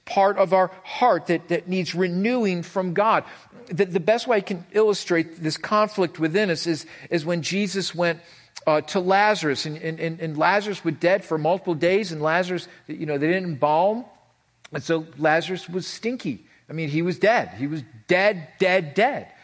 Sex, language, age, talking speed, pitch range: male, English, 50-69, 185 wpm, 165-215 Hz